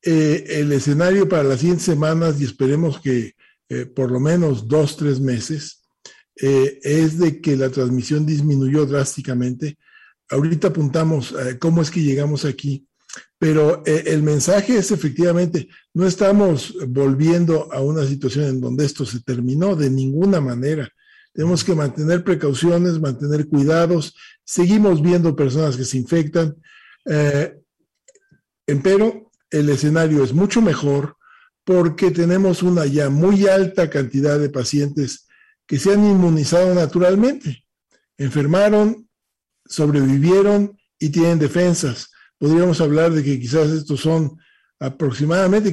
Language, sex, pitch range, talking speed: Spanish, male, 140-175 Hz, 130 wpm